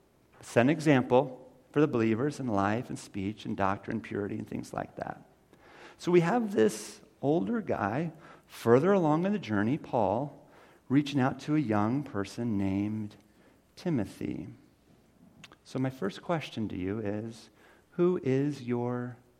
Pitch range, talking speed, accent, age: 115-155 Hz, 145 wpm, American, 50-69